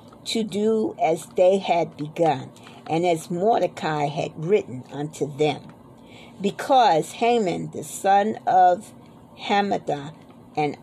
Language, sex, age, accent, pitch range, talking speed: English, female, 50-69, American, 160-220 Hz, 110 wpm